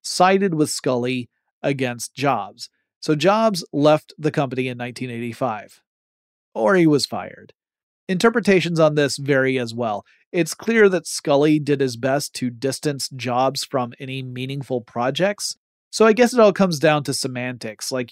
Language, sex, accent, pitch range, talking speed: English, male, American, 125-175 Hz, 150 wpm